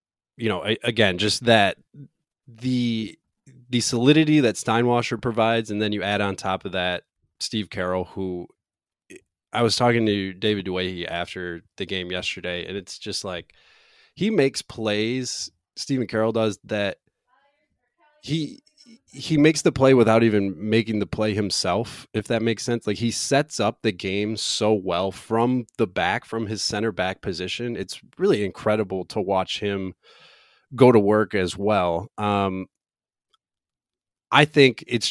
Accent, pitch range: American, 95-120 Hz